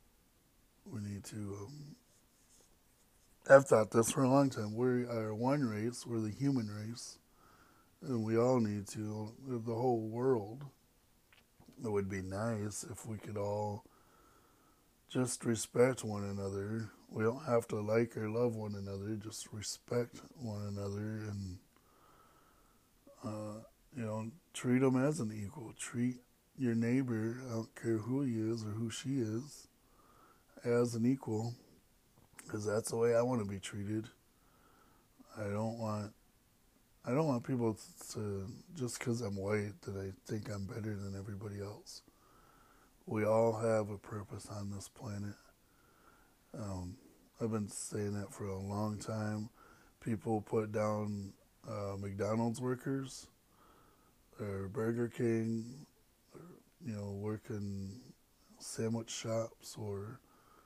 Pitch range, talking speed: 105-120 Hz, 135 wpm